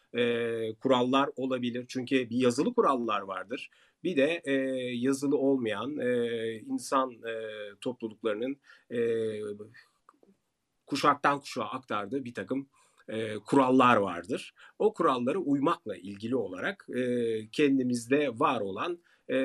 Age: 40-59